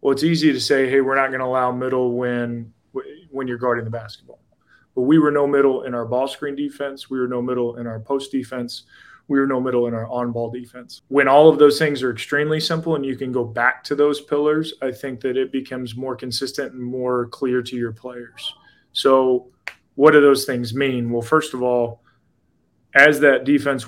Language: English